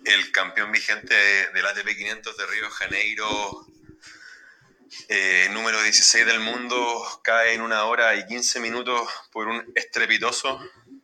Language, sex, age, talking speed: Spanish, male, 30-49, 135 wpm